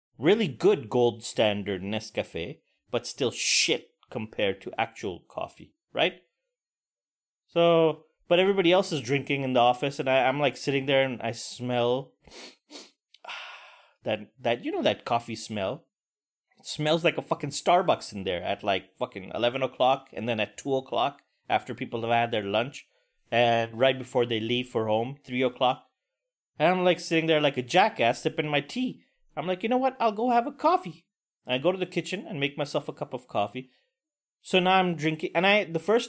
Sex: male